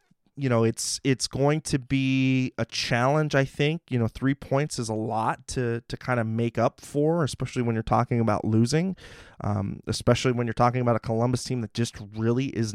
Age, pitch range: 20-39, 115-135 Hz